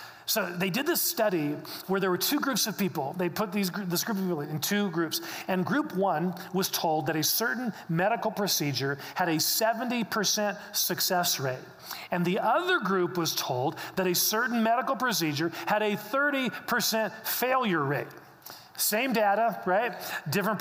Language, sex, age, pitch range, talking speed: English, male, 40-59, 165-225 Hz, 165 wpm